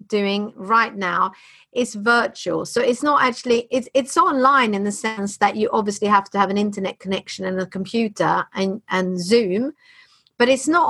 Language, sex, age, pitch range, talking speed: English, female, 40-59, 195-240 Hz, 180 wpm